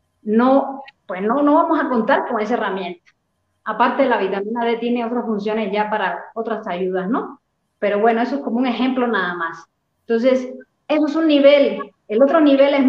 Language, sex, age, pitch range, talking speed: Spanish, female, 30-49, 210-270 Hz, 185 wpm